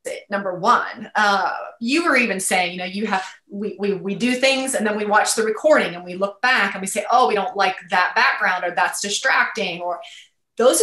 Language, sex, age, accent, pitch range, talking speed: English, female, 30-49, American, 195-245 Hz, 220 wpm